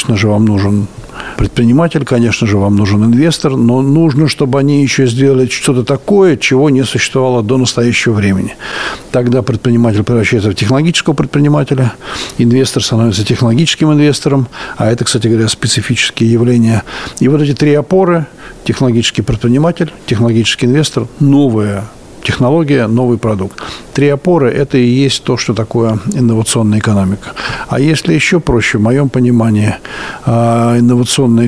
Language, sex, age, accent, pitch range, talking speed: Russian, male, 60-79, native, 115-140 Hz, 135 wpm